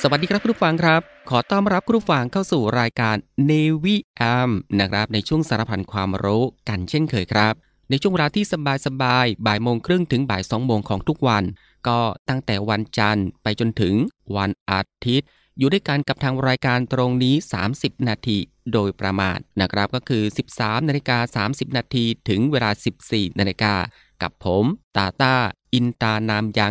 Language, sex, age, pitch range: Thai, male, 20-39, 105-135 Hz